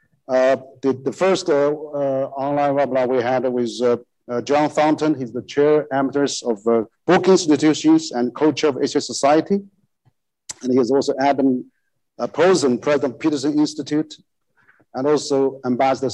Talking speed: 160 wpm